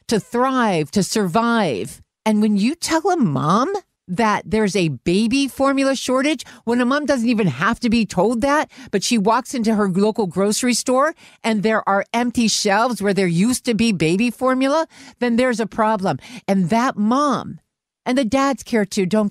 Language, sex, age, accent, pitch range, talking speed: English, female, 50-69, American, 185-245 Hz, 185 wpm